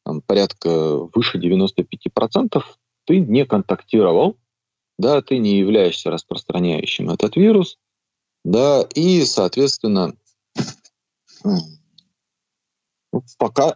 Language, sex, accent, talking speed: Russian, male, native, 80 wpm